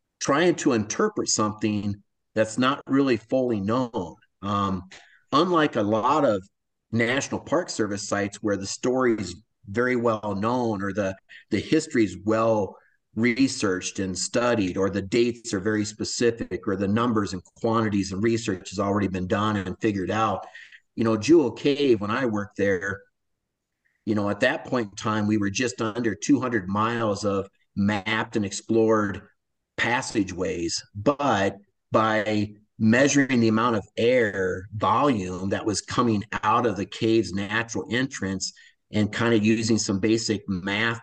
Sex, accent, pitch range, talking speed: male, American, 100-115 Hz, 150 wpm